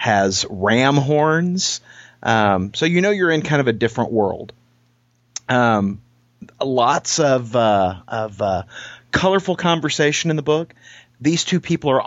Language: English